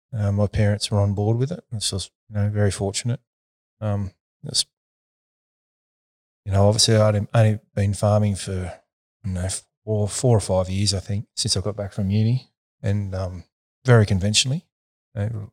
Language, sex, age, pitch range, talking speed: English, male, 30-49, 95-110 Hz, 175 wpm